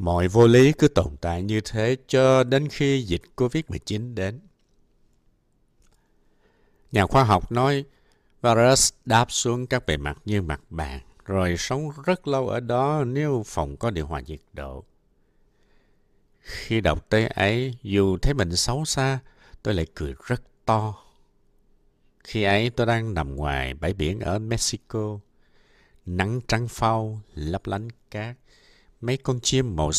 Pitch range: 85-125 Hz